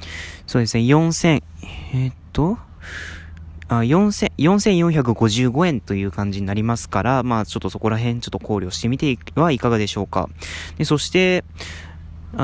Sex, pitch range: male, 100-155 Hz